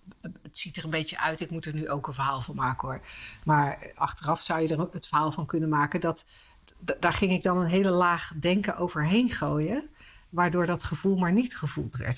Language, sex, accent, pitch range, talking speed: Dutch, female, Dutch, 160-205 Hz, 220 wpm